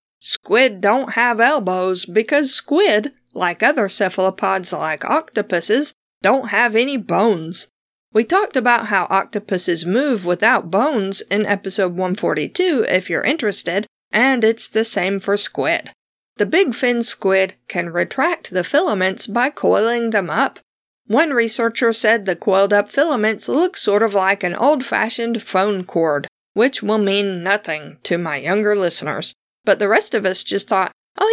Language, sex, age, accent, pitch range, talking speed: English, female, 50-69, American, 190-240 Hz, 150 wpm